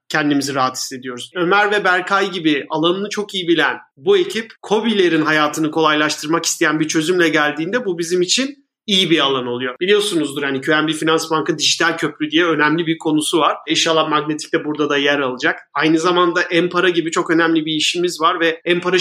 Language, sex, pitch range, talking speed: Turkish, male, 155-205 Hz, 175 wpm